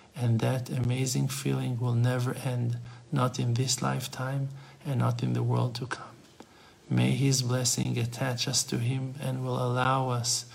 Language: English